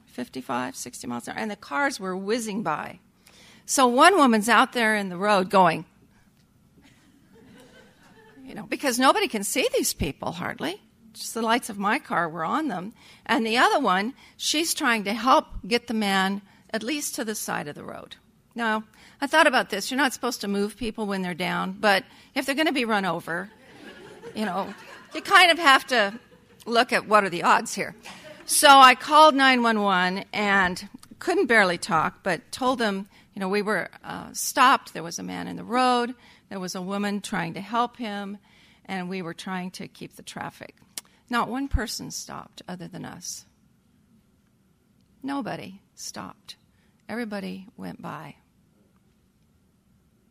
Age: 50-69